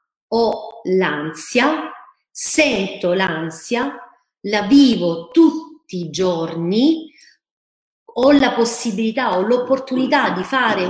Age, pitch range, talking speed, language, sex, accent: 40-59, 190-270 Hz, 90 wpm, Italian, female, native